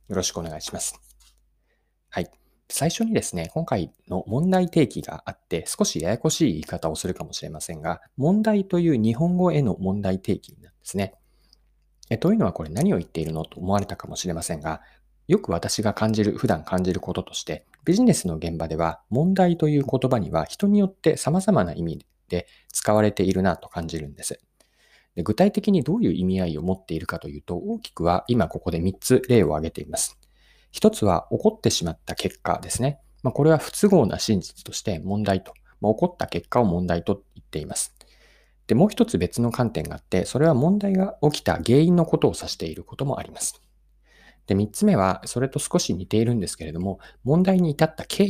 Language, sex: Japanese, male